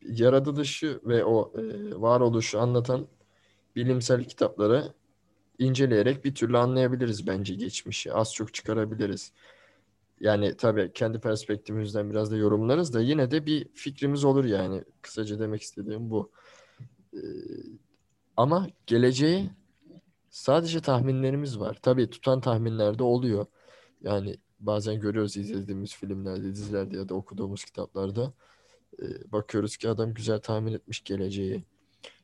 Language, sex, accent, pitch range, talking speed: Turkish, male, native, 100-125 Hz, 115 wpm